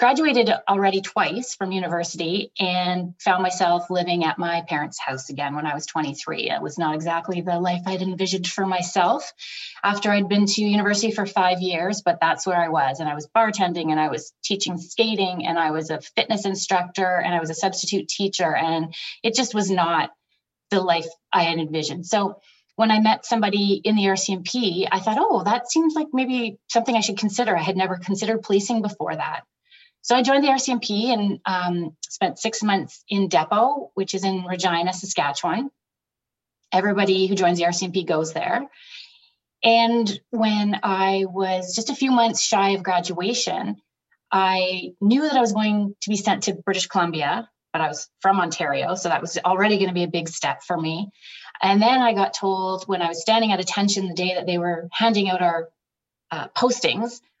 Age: 30-49